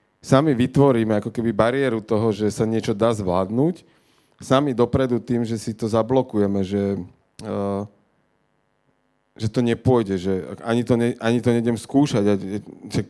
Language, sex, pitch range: Slovak, male, 105-125 Hz